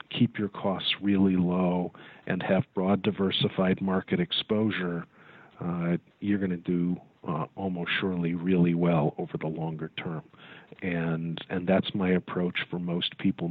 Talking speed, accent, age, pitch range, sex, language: 140 wpm, American, 40-59, 85-95 Hz, male, English